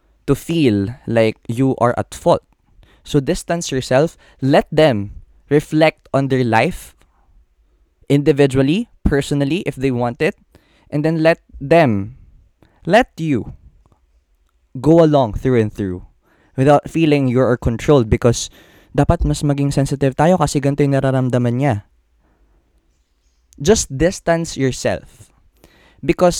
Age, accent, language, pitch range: 20-39, native, Filipino, 110-175 Hz